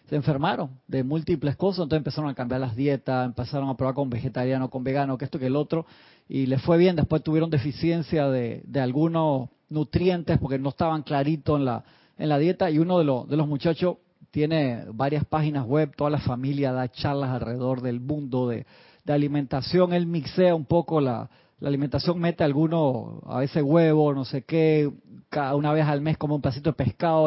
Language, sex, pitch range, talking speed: Spanish, male, 140-170 Hz, 200 wpm